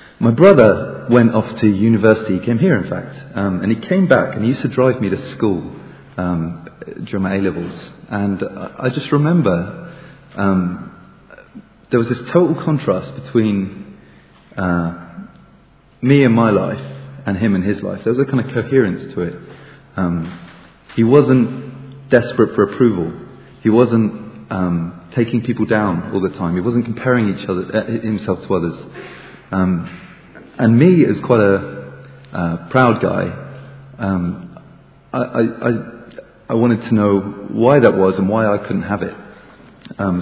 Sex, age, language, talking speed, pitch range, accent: male, 30-49, English, 160 wpm, 95-130 Hz, British